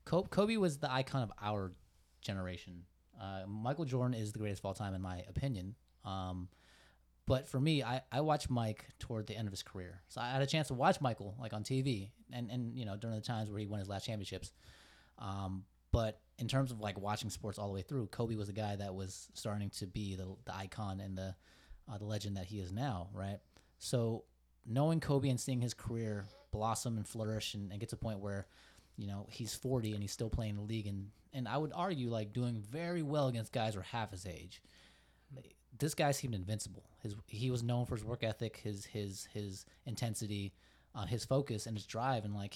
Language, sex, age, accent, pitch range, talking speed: English, male, 20-39, American, 95-125 Hz, 225 wpm